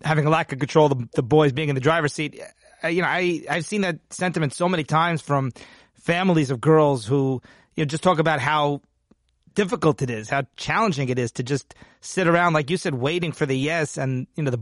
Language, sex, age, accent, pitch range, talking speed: English, male, 30-49, American, 140-175 Hz, 230 wpm